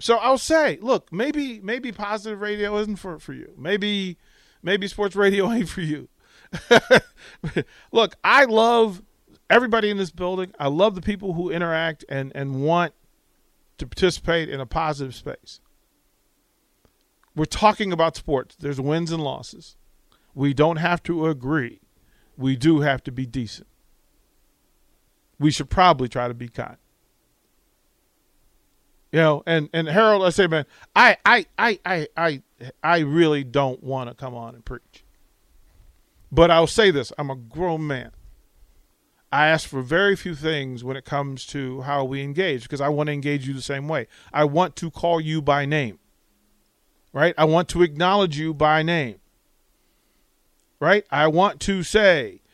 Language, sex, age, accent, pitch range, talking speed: English, male, 40-59, American, 140-195 Hz, 160 wpm